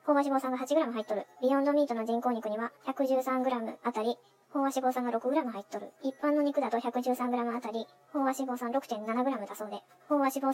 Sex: male